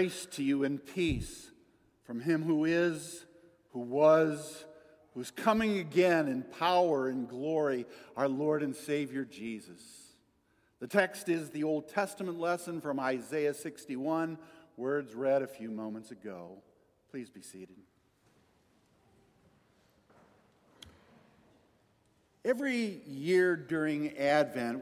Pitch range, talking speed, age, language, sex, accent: 140-200 Hz, 110 wpm, 50-69, English, male, American